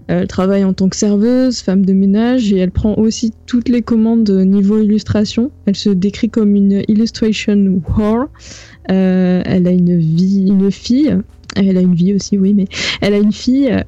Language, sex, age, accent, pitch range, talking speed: French, female, 20-39, French, 195-225 Hz, 185 wpm